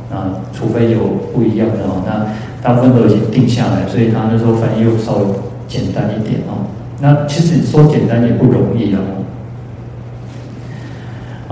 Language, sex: Chinese, male